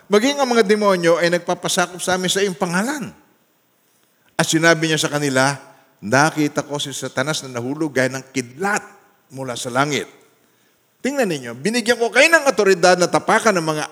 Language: Filipino